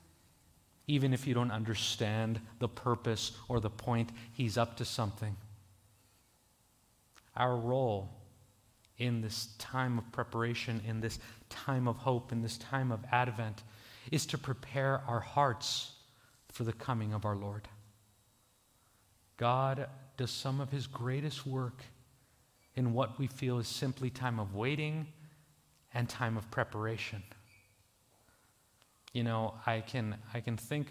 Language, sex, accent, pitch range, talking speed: English, male, American, 110-130 Hz, 135 wpm